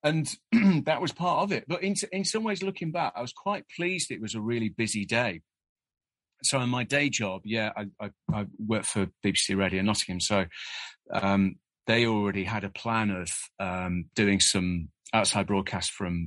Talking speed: 190 wpm